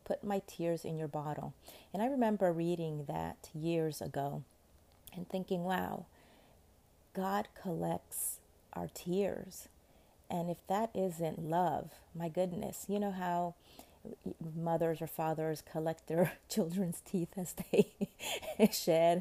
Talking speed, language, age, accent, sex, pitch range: 125 wpm, English, 30-49, American, female, 150-180 Hz